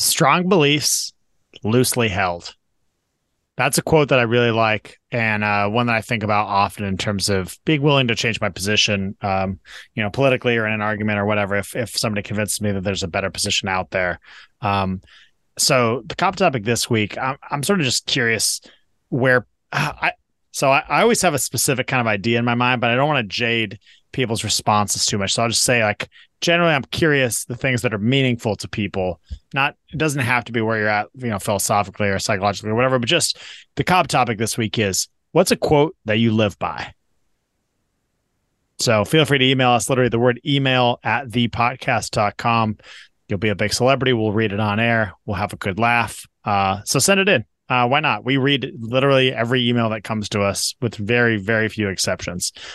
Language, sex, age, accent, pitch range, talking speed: English, male, 30-49, American, 105-130 Hz, 210 wpm